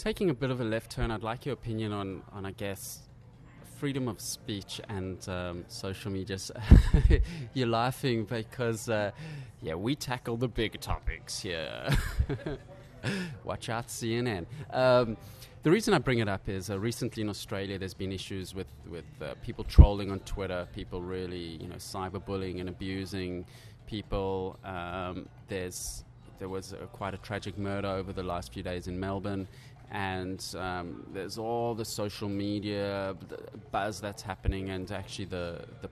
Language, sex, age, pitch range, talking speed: English, male, 20-39, 95-120 Hz, 160 wpm